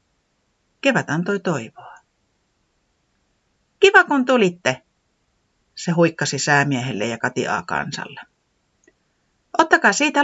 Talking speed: 90 wpm